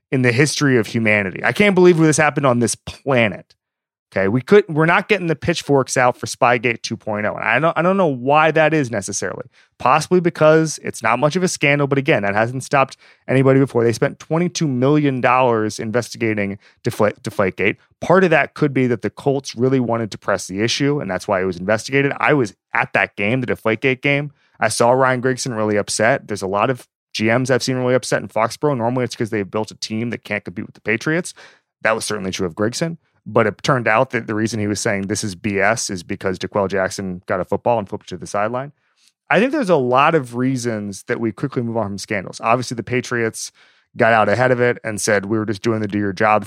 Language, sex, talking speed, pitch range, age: English, male, 230 wpm, 105-140 Hz, 30-49